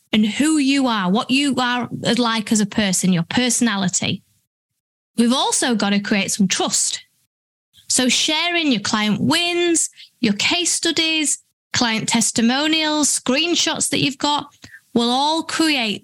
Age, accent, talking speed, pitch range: 20-39, British, 140 wpm, 215-315 Hz